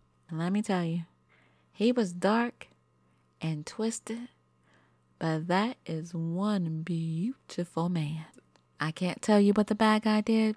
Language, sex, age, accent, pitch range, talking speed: English, female, 30-49, American, 160-215 Hz, 135 wpm